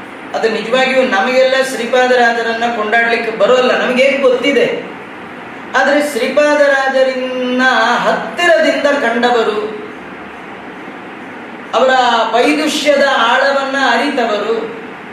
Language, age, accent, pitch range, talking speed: Kannada, 30-49, native, 235-275 Hz, 65 wpm